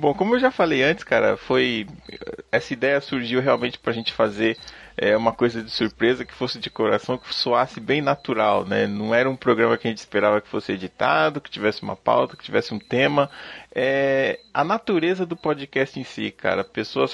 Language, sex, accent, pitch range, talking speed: Portuguese, male, Brazilian, 115-145 Hz, 200 wpm